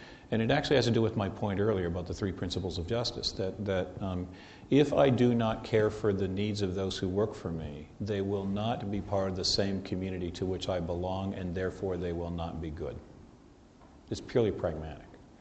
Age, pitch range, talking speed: 50-69, 90-105 Hz, 220 wpm